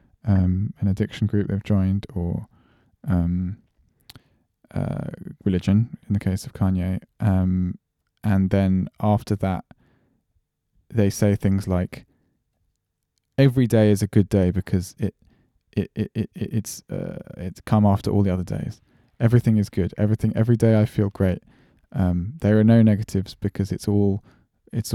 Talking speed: 150 wpm